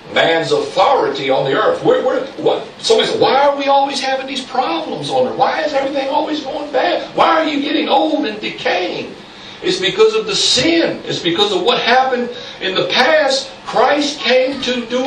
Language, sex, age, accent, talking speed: English, male, 60-79, American, 195 wpm